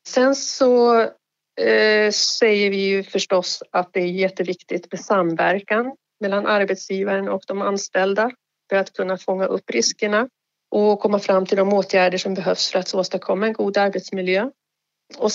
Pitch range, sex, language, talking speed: 190-225 Hz, female, Swedish, 155 wpm